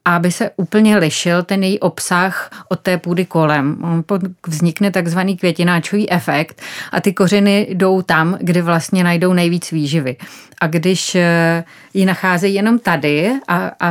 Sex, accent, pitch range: female, native, 160-180 Hz